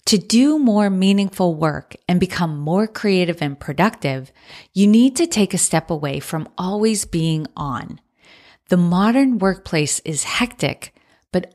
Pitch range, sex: 160-210 Hz, female